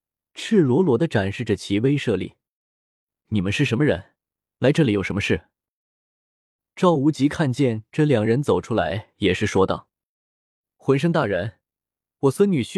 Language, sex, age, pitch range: Chinese, male, 20-39, 105-155 Hz